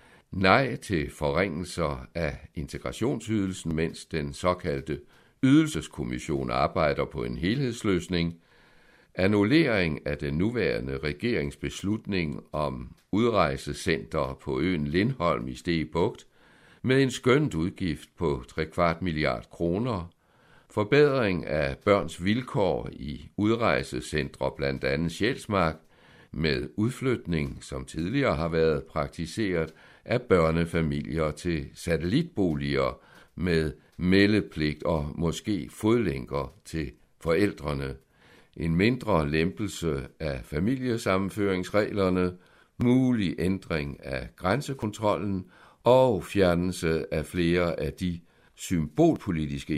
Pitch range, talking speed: 75-100 Hz, 95 wpm